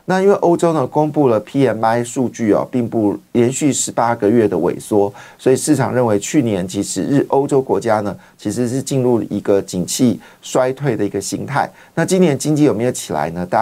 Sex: male